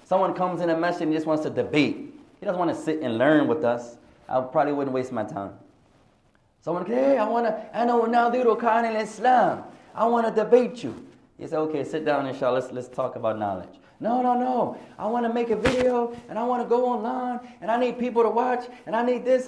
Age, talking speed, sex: 20-39, 230 wpm, male